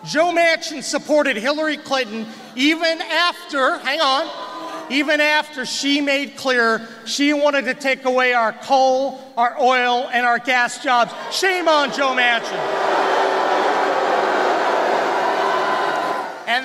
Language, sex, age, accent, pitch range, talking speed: English, male, 40-59, American, 265-325 Hz, 115 wpm